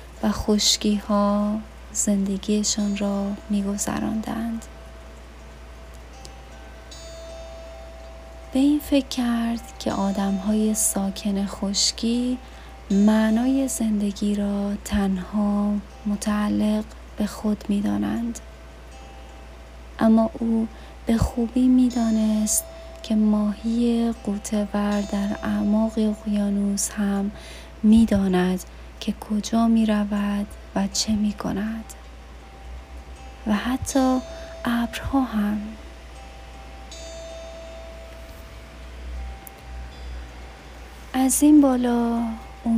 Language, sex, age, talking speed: Persian, female, 30-49, 75 wpm